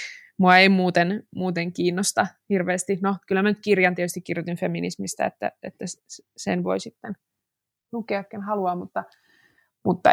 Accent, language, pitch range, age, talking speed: native, Finnish, 180-235 Hz, 20-39, 135 wpm